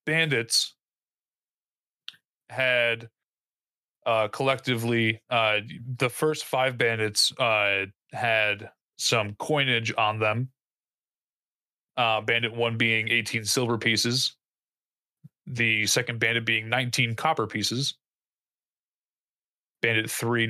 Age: 30-49